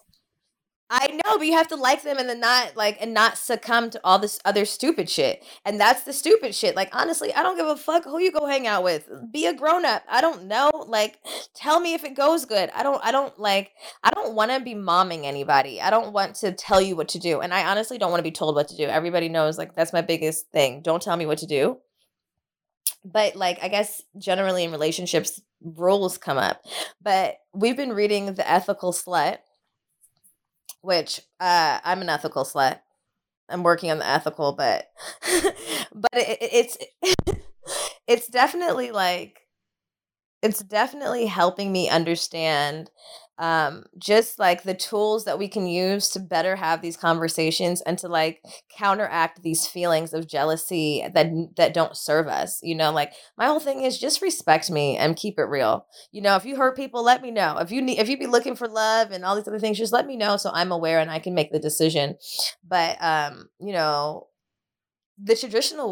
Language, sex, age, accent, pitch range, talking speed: English, female, 20-39, American, 165-235 Hz, 200 wpm